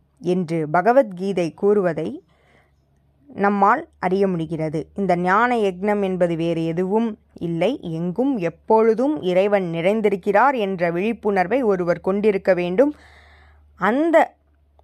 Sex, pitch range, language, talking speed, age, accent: female, 175-260 Hz, Tamil, 90 wpm, 20-39, native